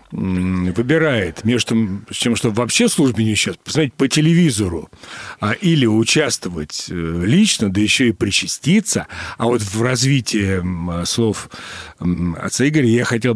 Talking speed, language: 130 wpm, Russian